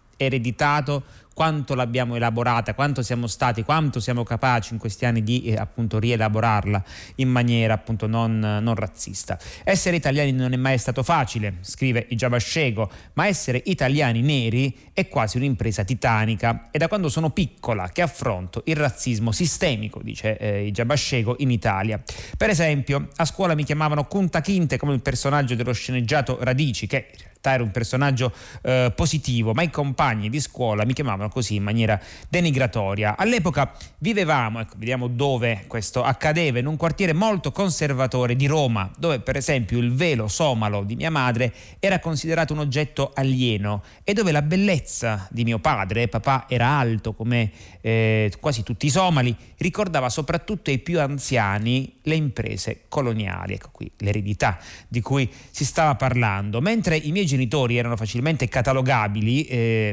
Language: Italian